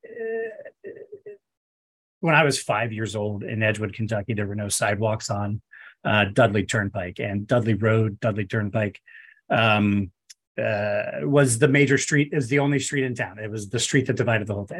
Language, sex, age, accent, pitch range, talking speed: English, male, 40-59, American, 110-135 Hz, 175 wpm